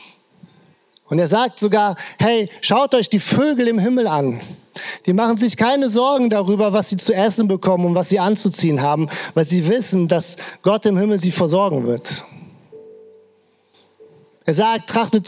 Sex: male